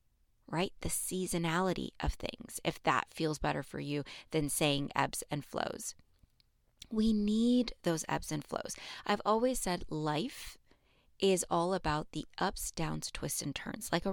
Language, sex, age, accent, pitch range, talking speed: English, female, 30-49, American, 155-195 Hz, 155 wpm